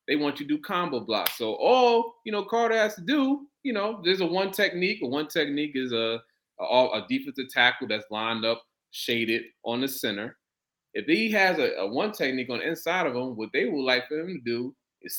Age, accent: 30-49, American